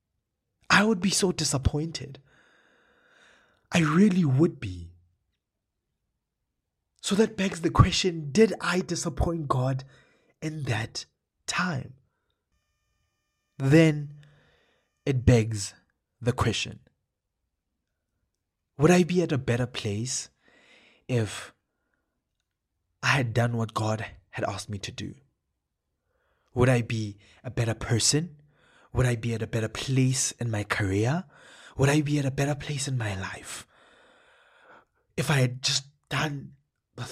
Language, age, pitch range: English, 20-39, 110-155 Hz